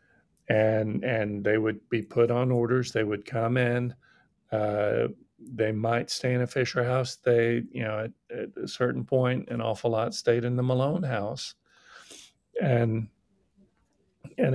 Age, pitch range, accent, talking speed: 50-69, 115-130 Hz, American, 155 wpm